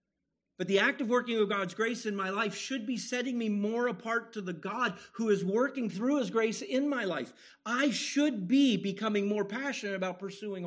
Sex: male